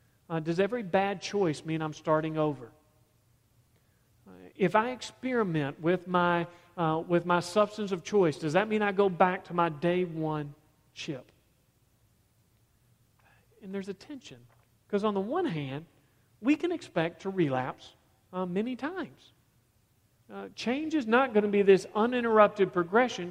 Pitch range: 120-195 Hz